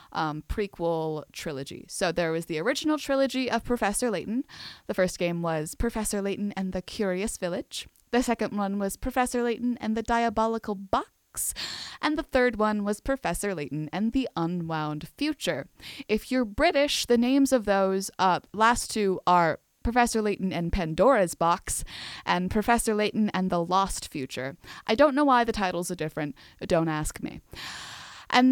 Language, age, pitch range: English, 20-39, 175-245 Hz